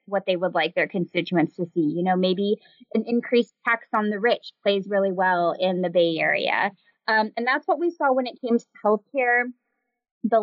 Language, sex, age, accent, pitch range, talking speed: English, female, 20-39, American, 185-240 Hz, 215 wpm